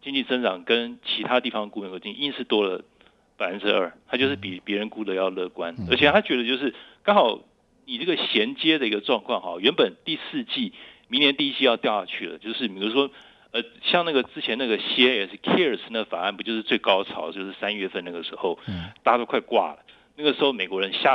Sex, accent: male, native